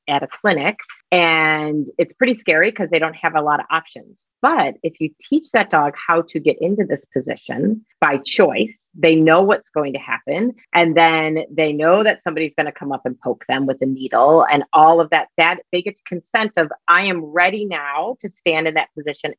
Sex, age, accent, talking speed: female, 30-49, American, 215 wpm